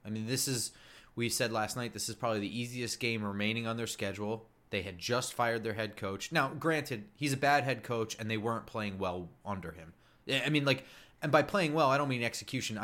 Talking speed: 235 wpm